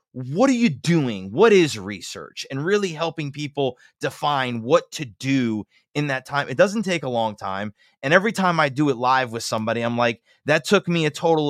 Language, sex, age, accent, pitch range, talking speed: English, male, 20-39, American, 130-175 Hz, 210 wpm